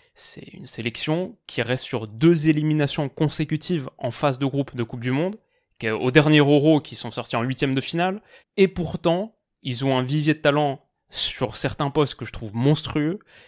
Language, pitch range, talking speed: French, 125-155 Hz, 185 wpm